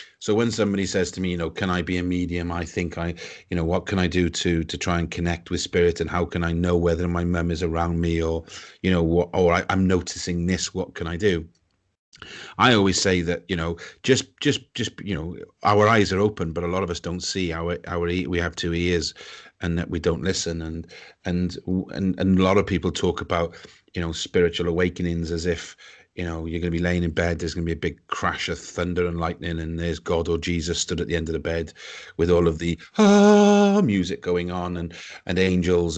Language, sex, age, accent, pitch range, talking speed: English, male, 30-49, British, 85-95 Hz, 245 wpm